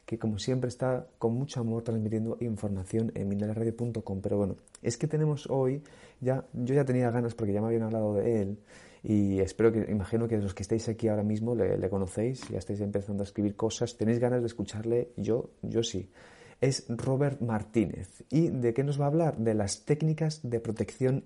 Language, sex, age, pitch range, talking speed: Spanish, male, 30-49, 110-125 Hz, 200 wpm